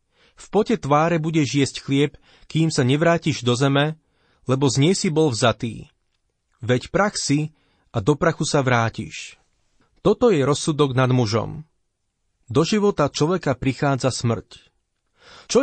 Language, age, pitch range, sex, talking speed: Slovak, 40-59, 125-165 Hz, male, 140 wpm